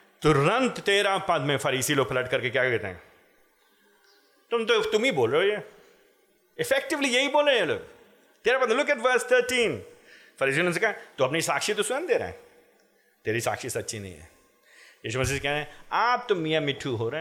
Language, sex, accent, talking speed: Hindi, male, native, 190 wpm